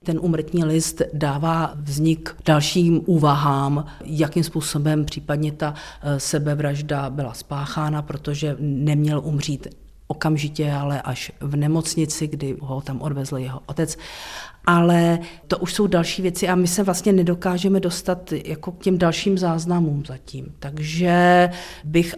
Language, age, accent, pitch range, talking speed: Czech, 40-59, native, 155-180 Hz, 130 wpm